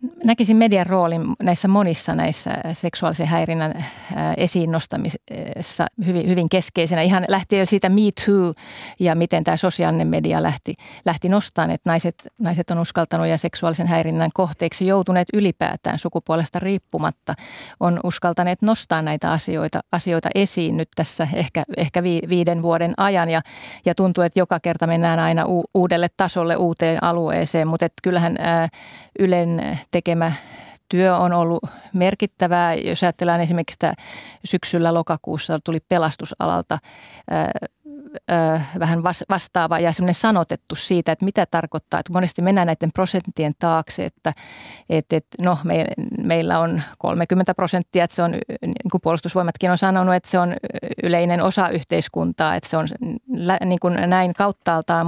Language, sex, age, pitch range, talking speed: Finnish, female, 30-49, 165-185 Hz, 140 wpm